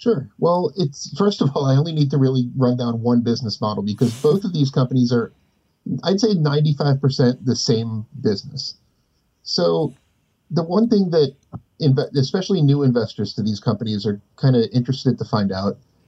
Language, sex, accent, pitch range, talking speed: English, male, American, 110-140 Hz, 175 wpm